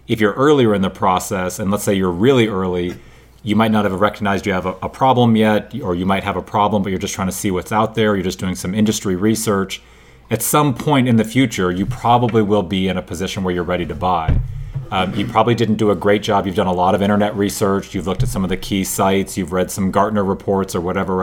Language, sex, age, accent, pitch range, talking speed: English, male, 30-49, American, 90-110 Hz, 260 wpm